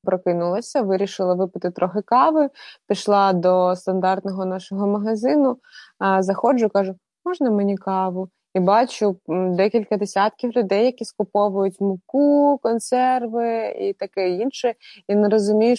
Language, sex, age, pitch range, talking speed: Ukrainian, female, 20-39, 185-215 Hz, 115 wpm